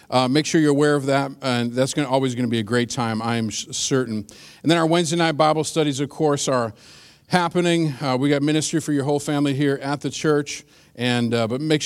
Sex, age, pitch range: male, 50-69, 125-160 Hz